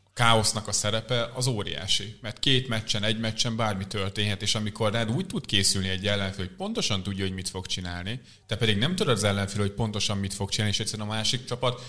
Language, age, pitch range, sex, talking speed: Hungarian, 30-49, 95-110 Hz, male, 215 wpm